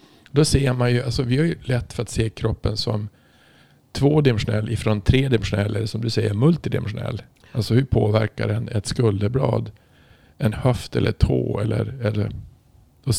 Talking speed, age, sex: 165 wpm, 50-69, male